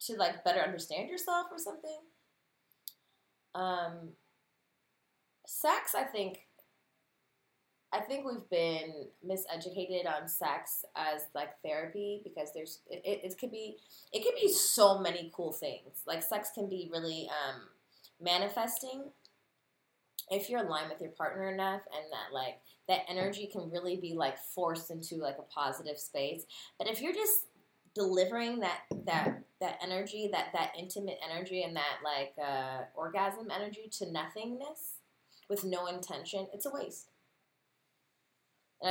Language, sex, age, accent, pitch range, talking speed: English, female, 20-39, American, 155-205 Hz, 140 wpm